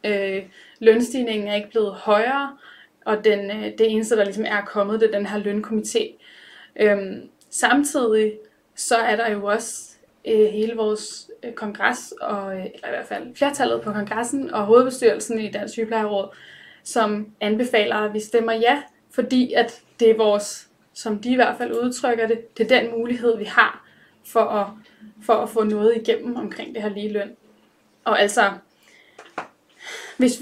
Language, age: Danish, 20-39